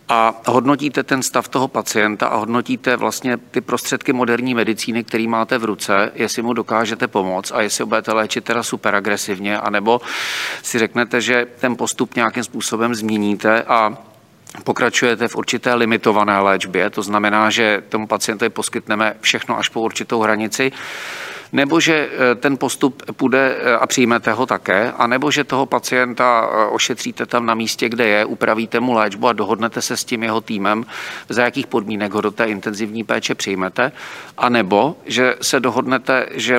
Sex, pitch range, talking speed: male, 110-125 Hz, 160 wpm